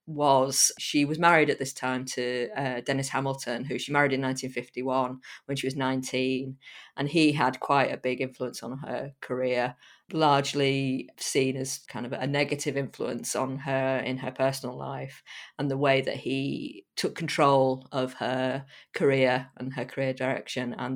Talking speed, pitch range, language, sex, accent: 170 wpm, 130-140 Hz, English, female, British